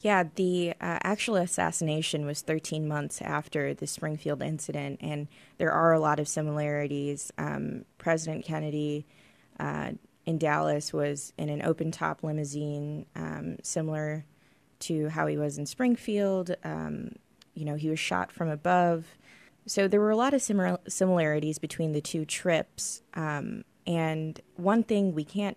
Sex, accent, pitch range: female, American, 150-175 Hz